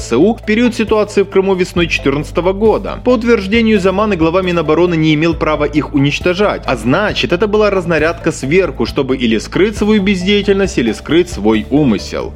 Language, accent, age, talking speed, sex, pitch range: Russian, native, 20-39, 160 wpm, male, 150-205 Hz